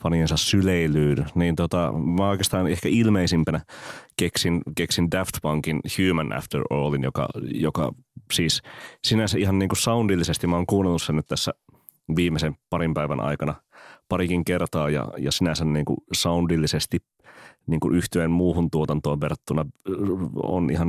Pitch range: 75-90 Hz